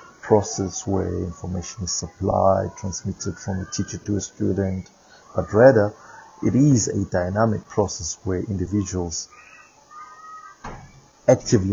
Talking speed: 115 wpm